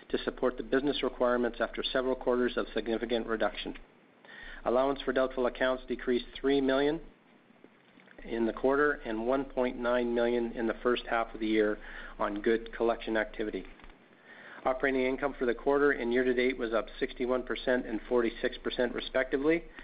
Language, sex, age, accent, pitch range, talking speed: English, male, 50-69, American, 115-130 Hz, 145 wpm